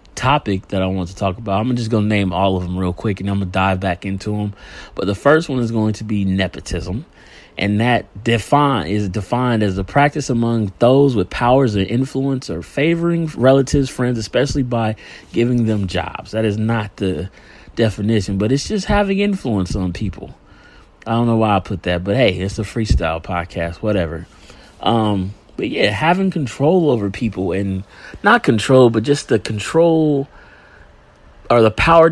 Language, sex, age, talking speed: English, male, 30-49, 185 wpm